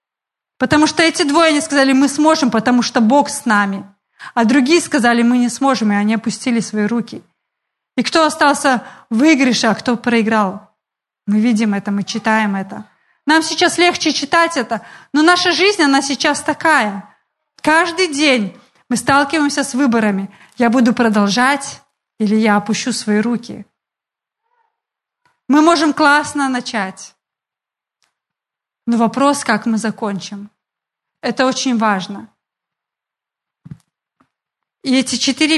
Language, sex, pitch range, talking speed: Russian, female, 220-280 Hz, 130 wpm